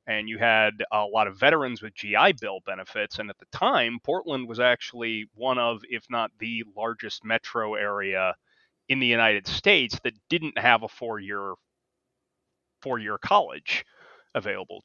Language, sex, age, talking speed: English, male, 30-49, 155 wpm